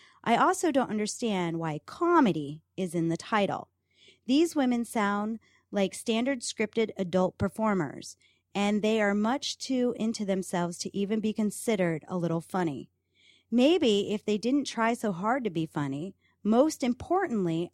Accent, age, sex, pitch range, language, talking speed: American, 30-49, female, 190-255 Hz, English, 150 wpm